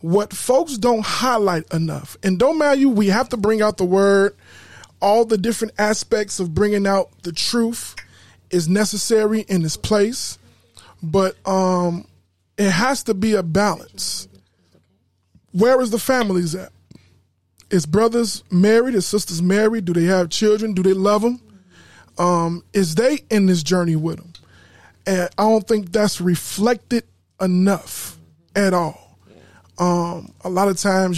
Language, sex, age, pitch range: English, male, 20-39, 155-215 Hz